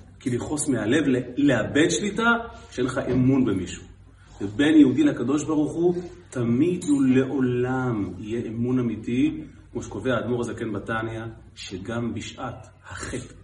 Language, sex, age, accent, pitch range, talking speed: Hebrew, male, 40-59, native, 90-120 Hz, 130 wpm